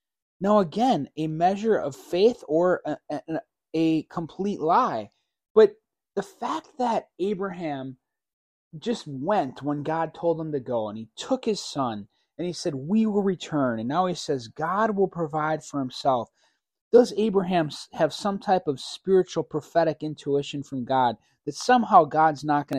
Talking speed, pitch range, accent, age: 160 wpm, 125-185 Hz, American, 30-49